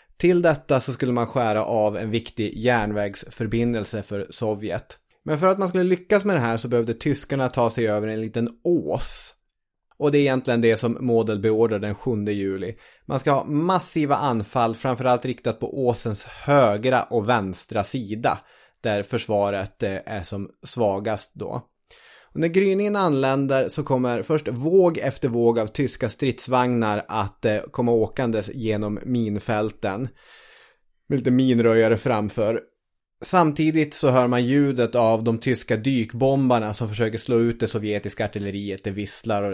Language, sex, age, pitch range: Swedish, male, 20-39, 105-135 Hz